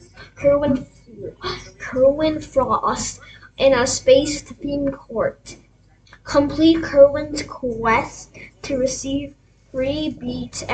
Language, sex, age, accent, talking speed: English, female, 10-29, American, 85 wpm